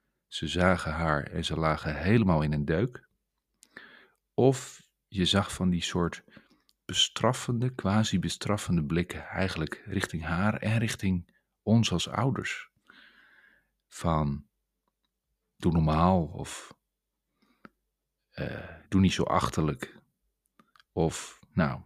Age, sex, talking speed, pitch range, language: 40-59, male, 105 wpm, 80-100 Hz, Dutch